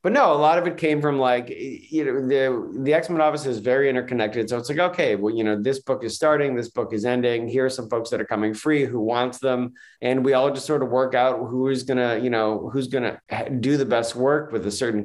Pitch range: 110-140 Hz